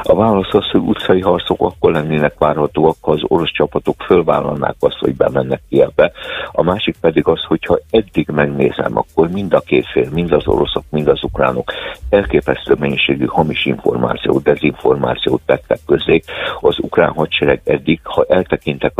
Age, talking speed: 60-79, 160 wpm